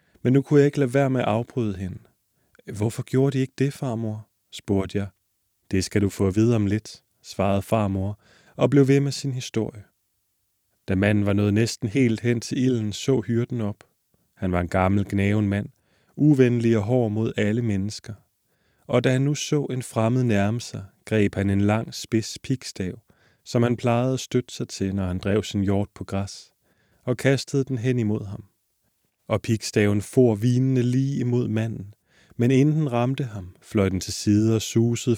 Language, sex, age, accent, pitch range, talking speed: Danish, male, 30-49, native, 100-125 Hz, 190 wpm